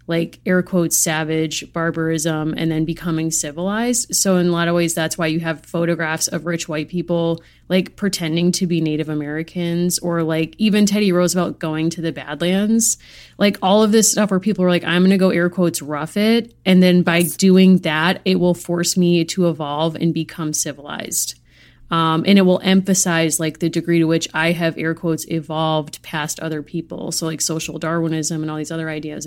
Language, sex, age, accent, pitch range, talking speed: English, female, 30-49, American, 160-180 Hz, 200 wpm